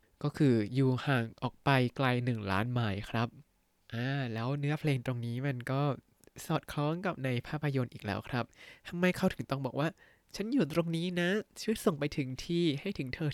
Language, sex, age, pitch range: Thai, male, 20-39, 115-140 Hz